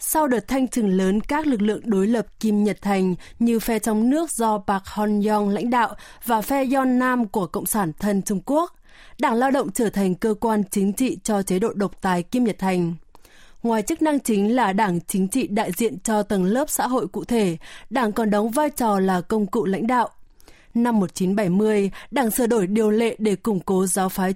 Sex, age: female, 20-39